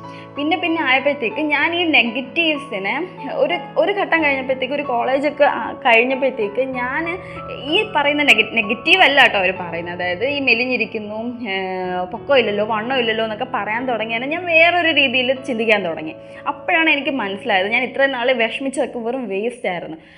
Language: Malayalam